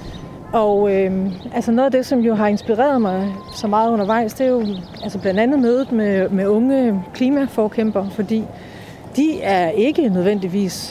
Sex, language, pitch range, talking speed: female, Danish, 190-245 Hz, 165 wpm